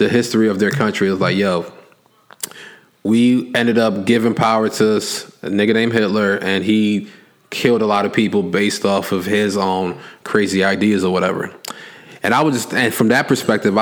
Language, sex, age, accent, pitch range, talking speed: English, male, 20-39, American, 100-120 Hz, 180 wpm